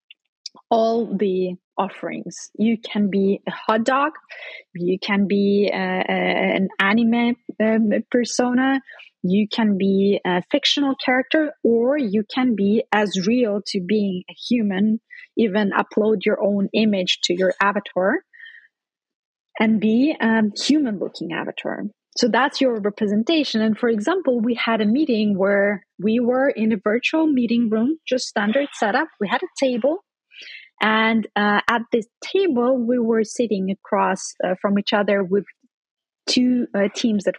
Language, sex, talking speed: English, female, 150 wpm